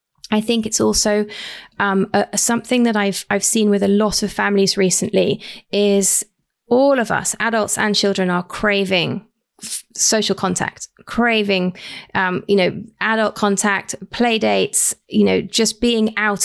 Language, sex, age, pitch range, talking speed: English, female, 20-39, 195-220 Hz, 155 wpm